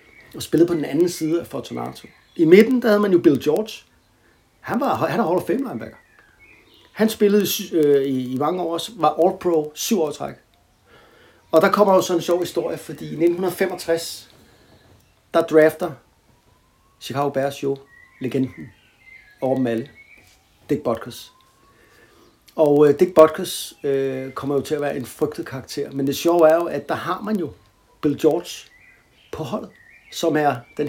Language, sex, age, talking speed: Danish, male, 60-79, 175 wpm